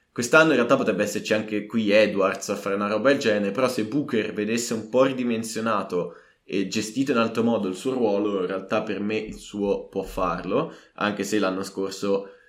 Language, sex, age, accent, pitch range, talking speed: Italian, male, 20-39, native, 105-130 Hz, 195 wpm